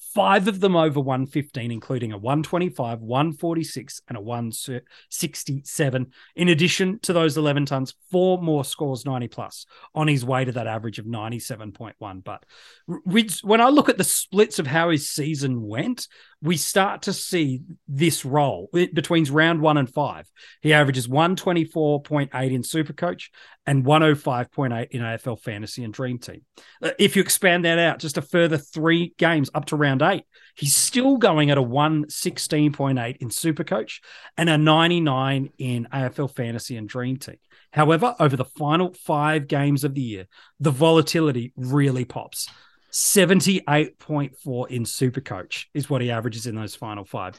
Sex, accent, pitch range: male, Australian, 130-170 Hz